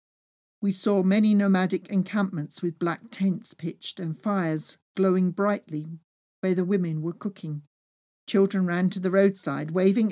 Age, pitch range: 50-69, 165-205 Hz